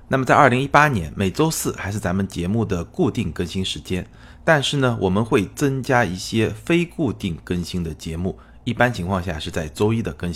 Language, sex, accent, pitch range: Chinese, male, native, 90-115 Hz